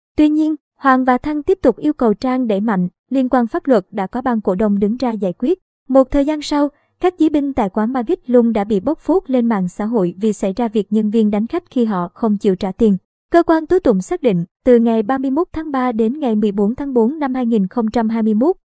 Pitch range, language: 220-280 Hz, Vietnamese